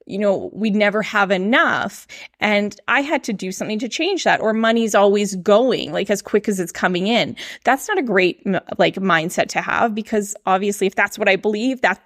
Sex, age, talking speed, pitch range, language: female, 20-39, 210 wpm, 195-240 Hz, English